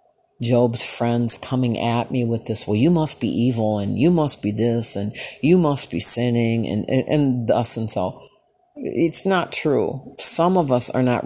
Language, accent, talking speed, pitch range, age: English, American, 190 wpm, 115-145 Hz, 40-59